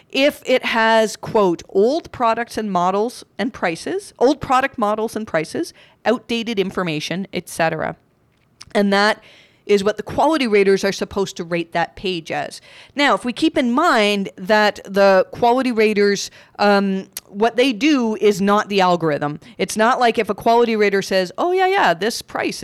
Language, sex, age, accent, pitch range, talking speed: English, female, 40-59, American, 180-230 Hz, 165 wpm